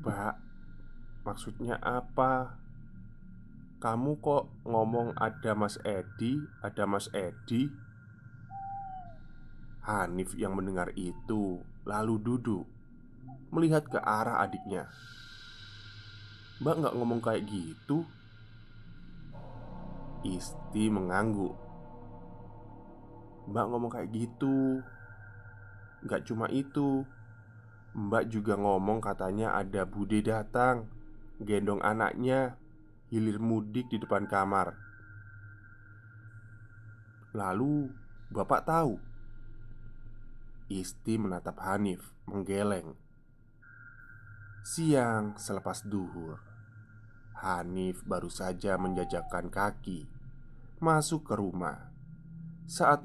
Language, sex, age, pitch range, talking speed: Indonesian, male, 20-39, 100-125 Hz, 80 wpm